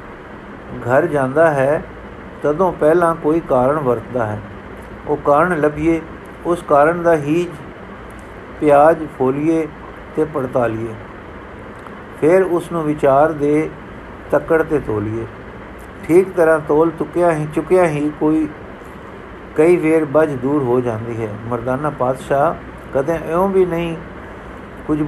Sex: male